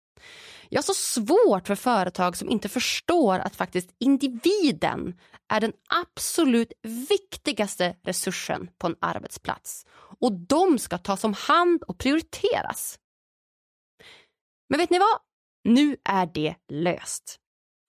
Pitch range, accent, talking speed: 185-295 Hz, Swedish, 115 wpm